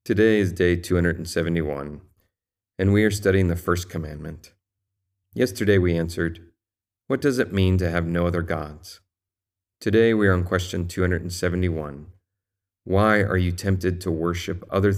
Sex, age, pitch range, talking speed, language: male, 40-59, 85-100 Hz, 145 wpm, English